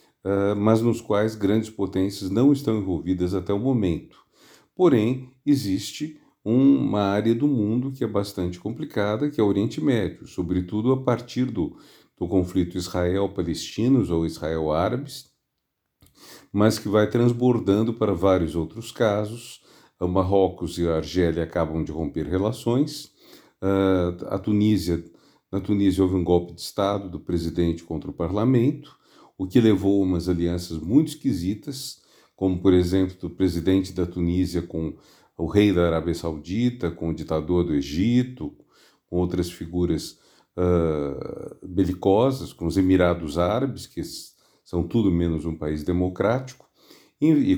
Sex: male